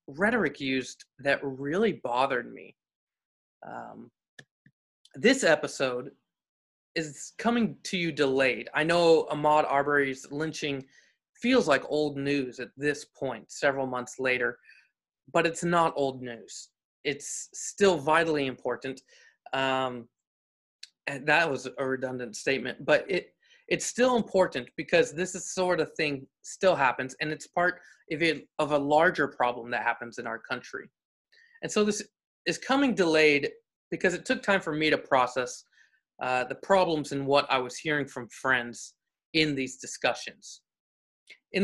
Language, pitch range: English, 130-170 Hz